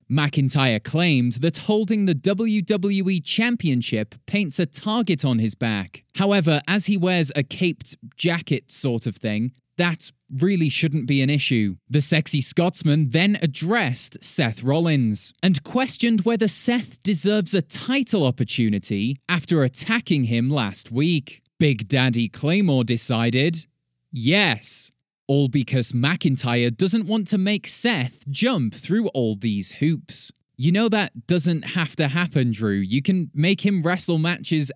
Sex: male